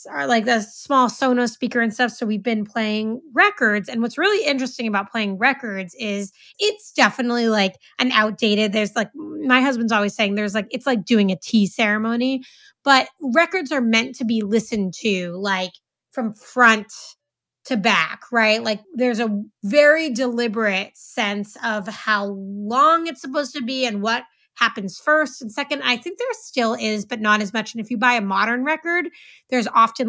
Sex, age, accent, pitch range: female, 30-49, American, 205-250 Hz